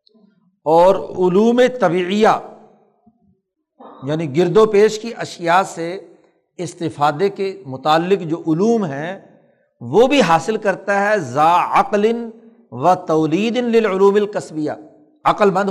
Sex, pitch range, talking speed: male, 155-215 Hz, 105 wpm